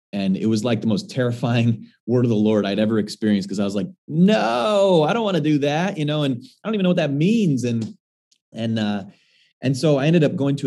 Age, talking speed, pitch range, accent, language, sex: 30-49, 255 wpm, 105-155 Hz, American, English, male